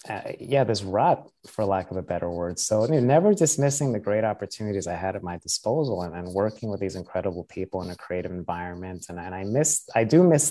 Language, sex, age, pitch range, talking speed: English, male, 30-49, 95-115 Hz, 235 wpm